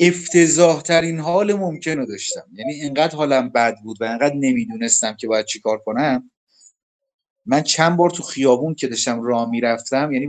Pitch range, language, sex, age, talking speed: 125-160 Hz, Persian, male, 30-49, 155 wpm